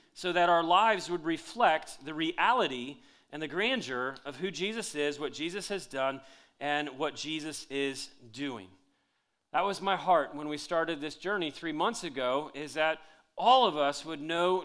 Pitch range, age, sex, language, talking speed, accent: 145-185 Hz, 40-59, male, English, 175 wpm, American